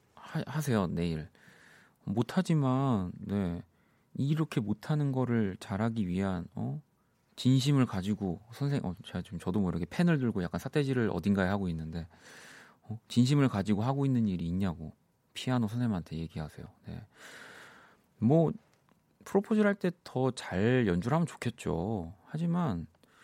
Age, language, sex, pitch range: 40-59, Korean, male, 90-135 Hz